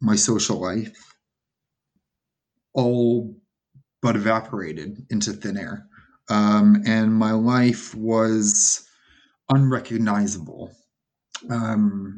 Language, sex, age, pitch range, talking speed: English, male, 30-49, 100-120 Hz, 80 wpm